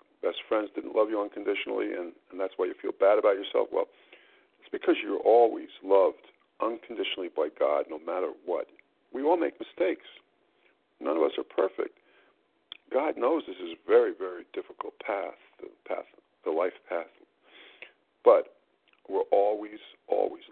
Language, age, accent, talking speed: English, 50-69, American, 155 wpm